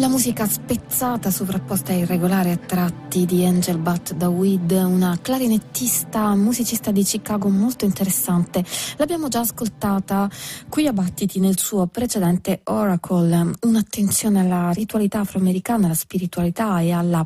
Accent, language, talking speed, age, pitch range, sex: native, Italian, 130 wpm, 20-39, 170-200 Hz, female